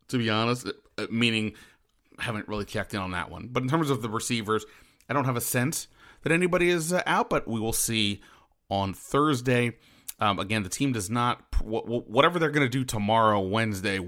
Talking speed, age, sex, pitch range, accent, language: 195 wpm, 30-49, male, 100-125 Hz, American, English